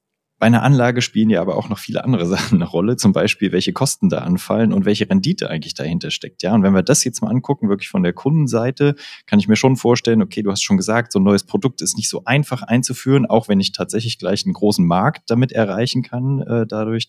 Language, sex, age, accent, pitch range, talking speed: German, male, 30-49, German, 110-140 Hz, 240 wpm